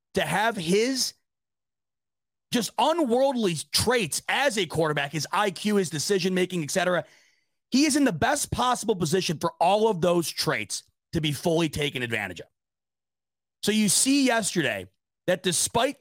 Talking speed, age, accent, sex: 145 wpm, 30-49, American, male